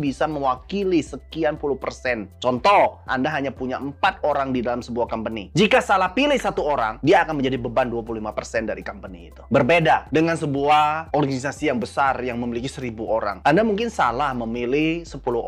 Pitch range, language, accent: 125-190 Hz, Indonesian, native